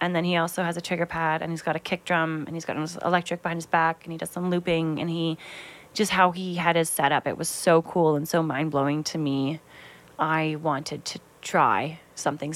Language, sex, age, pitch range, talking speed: English, female, 20-39, 155-175 Hz, 235 wpm